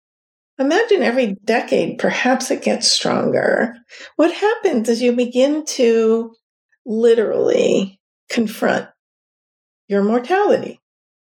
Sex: female